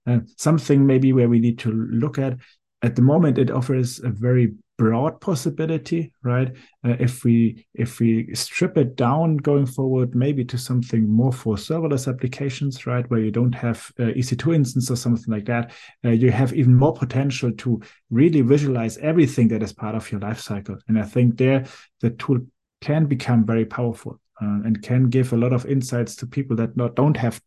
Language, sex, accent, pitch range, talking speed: English, male, German, 115-135 Hz, 190 wpm